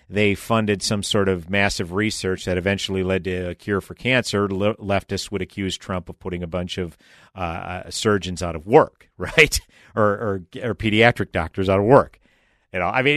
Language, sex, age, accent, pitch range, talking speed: English, male, 50-69, American, 100-155 Hz, 195 wpm